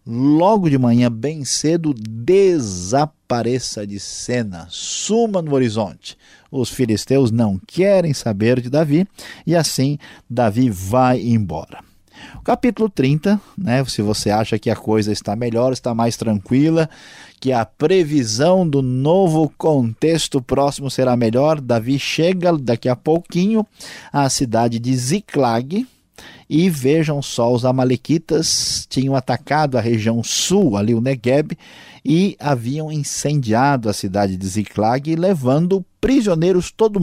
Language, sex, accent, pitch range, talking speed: Portuguese, male, Brazilian, 115-155 Hz, 125 wpm